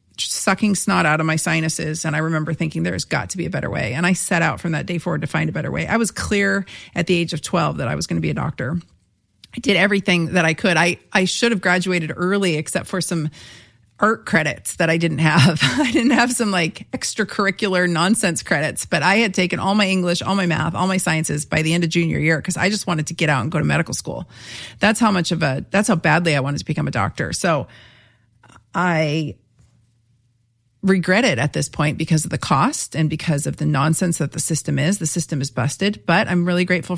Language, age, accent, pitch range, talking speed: English, 40-59, American, 155-185 Hz, 240 wpm